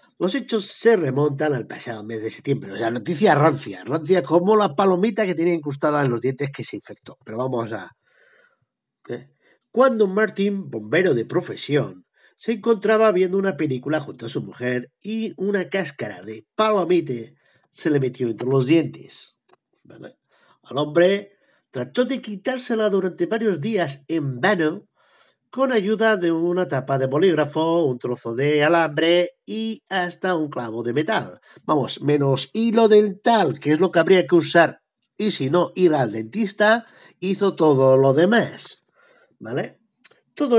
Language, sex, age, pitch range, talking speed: Spanish, male, 50-69, 135-200 Hz, 155 wpm